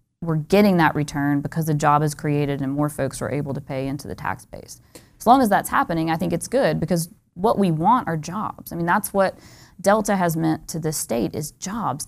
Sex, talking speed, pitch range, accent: female, 235 wpm, 150-195 Hz, American